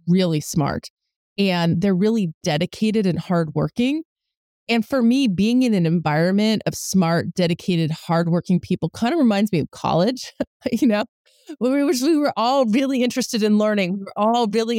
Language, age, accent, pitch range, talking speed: English, 20-39, American, 180-225 Hz, 160 wpm